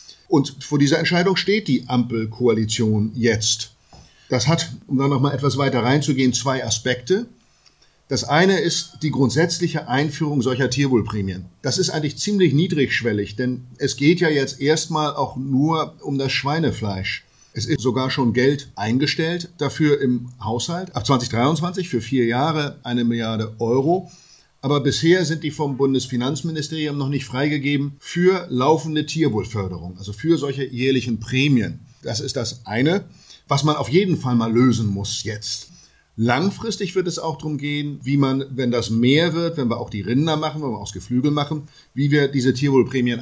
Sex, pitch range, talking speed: male, 120-155 Hz, 160 wpm